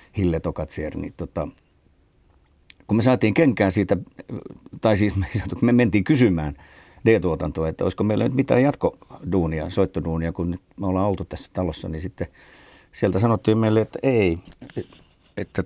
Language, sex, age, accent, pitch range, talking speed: Finnish, male, 50-69, native, 85-105 Hz, 140 wpm